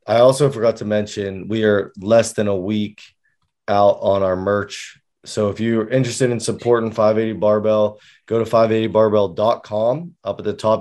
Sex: male